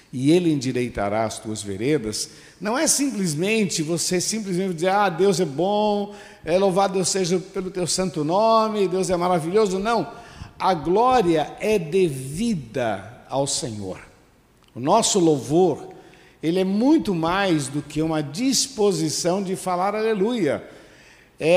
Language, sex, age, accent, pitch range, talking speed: Portuguese, male, 60-79, Brazilian, 135-190 Hz, 135 wpm